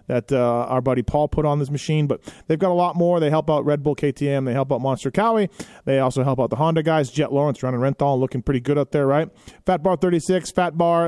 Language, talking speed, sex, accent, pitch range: English, 260 wpm, male, American, 135-165 Hz